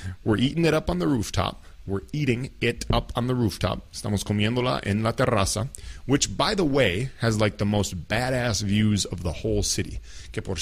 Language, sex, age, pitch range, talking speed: English, male, 30-49, 95-120 Hz, 200 wpm